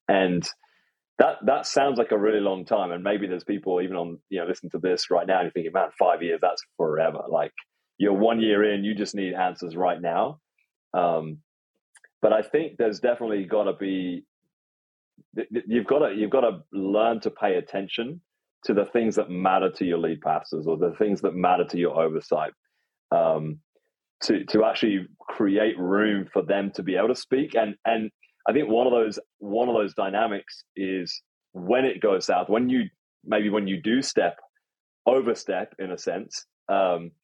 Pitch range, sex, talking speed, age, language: 90-110 Hz, male, 185 wpm, 30-49, English